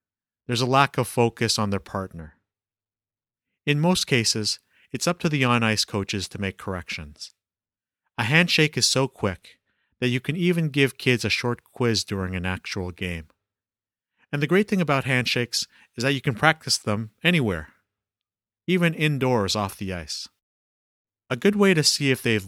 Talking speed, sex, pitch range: 170 wpm, male, 100-135 Hz